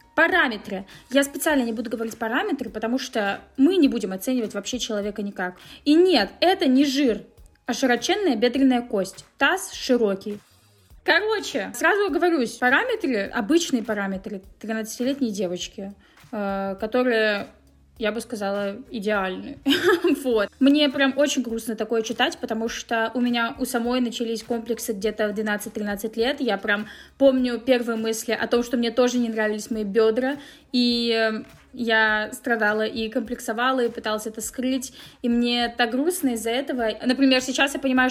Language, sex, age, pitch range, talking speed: Russian, female, 20-39, 220-270 Hz, 145 wpm